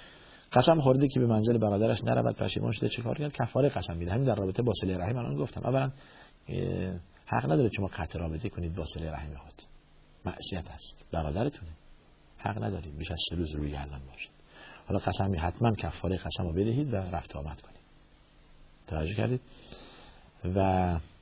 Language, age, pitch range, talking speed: Persian, 50-69, 85-120 Hz, 145 wpm